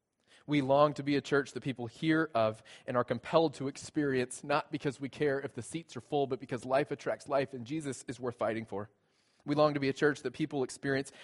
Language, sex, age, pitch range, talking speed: English, male, 20-39, 125-150 Hz, 235 wpm